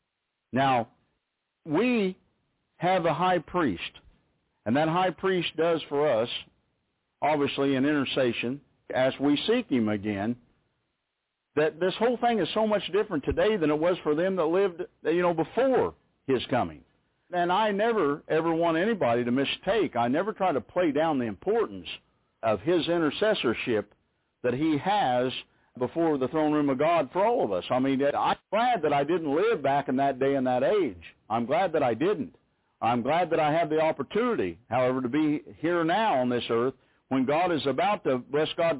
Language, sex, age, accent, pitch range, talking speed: English, male, 50-69, American, 130-175 Hz, 180 wpm